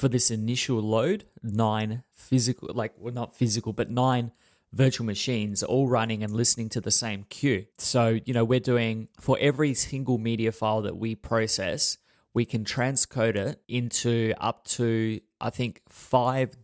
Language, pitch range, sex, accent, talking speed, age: English, 110-125 Hz, male, Australian, 160 wpm, 20-39